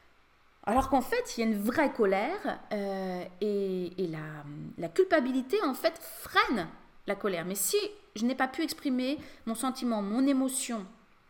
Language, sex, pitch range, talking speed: French, female, 200-295 Hz, 165 wpm